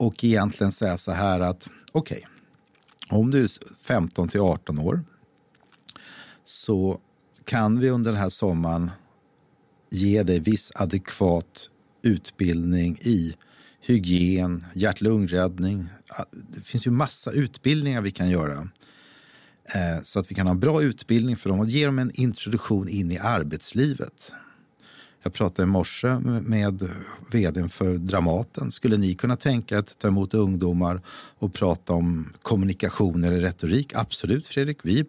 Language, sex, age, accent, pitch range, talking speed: Swedish, male, 50-69, native, 90-125 Hz, 140 wpm